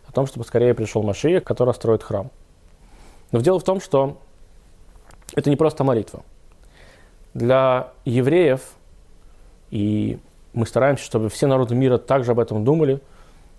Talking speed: 135 wpm